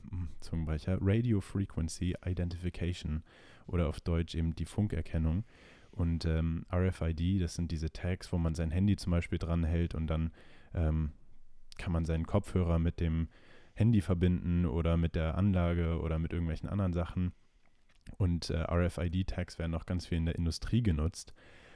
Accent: German